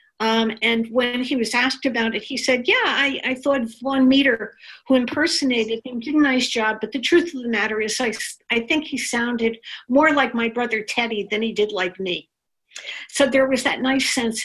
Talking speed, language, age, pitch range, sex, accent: 210 wpm, English, 60-79, 215-270 Hz, female, American